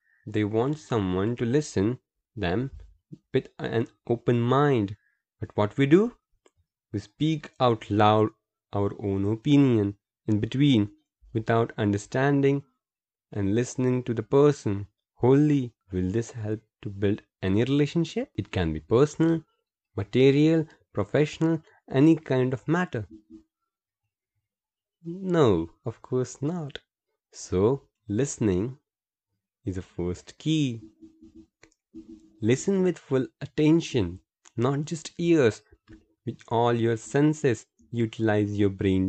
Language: Hindi